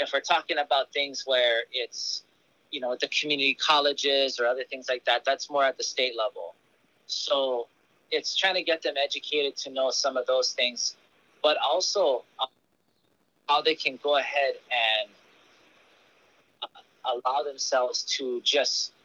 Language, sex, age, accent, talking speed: English, male, 30-49, American, 155 wpm